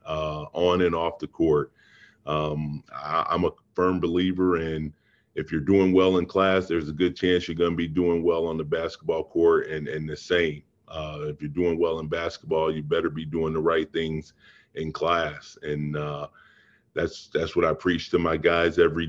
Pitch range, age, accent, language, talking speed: 75-90 Hz, 30-49, American, English, 200 wpm